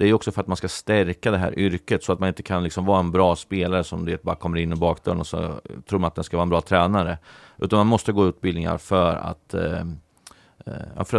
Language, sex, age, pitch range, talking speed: Swedish, male, 30-49, 85-105 Hz, 250 wpm